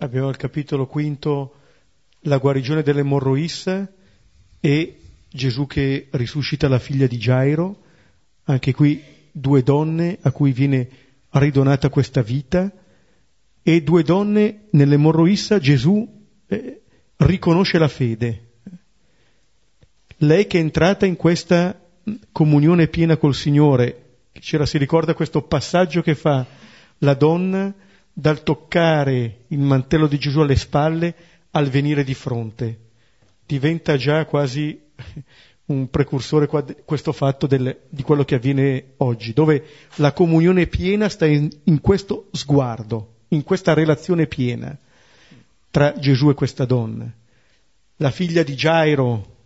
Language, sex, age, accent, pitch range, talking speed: Italian, male, 40-59, native, 135-165 Hz, 120 wpm